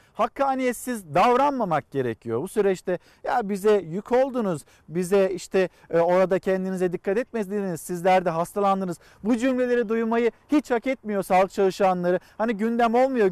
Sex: male